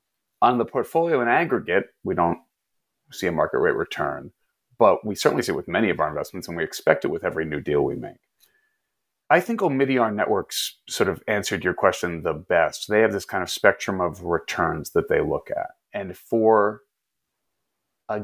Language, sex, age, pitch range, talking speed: English, male, 30-49, 95-140 Hz, 190 wpm